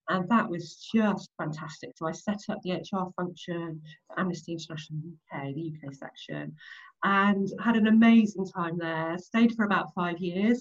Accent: British